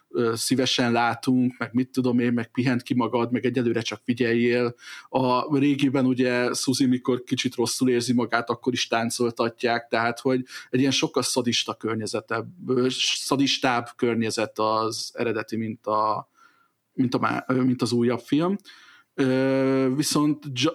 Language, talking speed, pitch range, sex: Hungarian, 135 wpm, 120-135 Hz, male